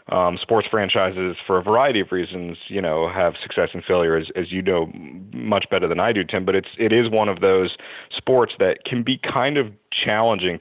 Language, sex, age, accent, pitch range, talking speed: English, male, 30-49, American, 90-100 Hz, 215 wpm